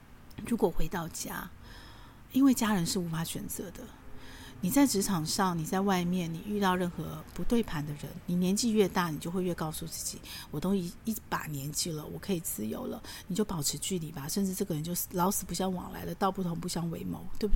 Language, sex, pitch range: Chinese, female, 165-205 Hz